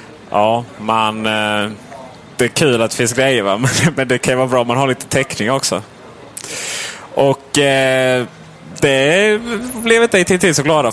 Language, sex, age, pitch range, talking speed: Swedish, male, 20-39, 100-130 Hz, 160 wpm